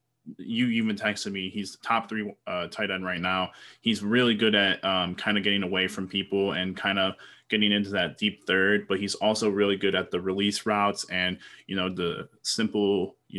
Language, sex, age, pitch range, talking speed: English, male, 20-39, 95-105 Hz, 210 wpm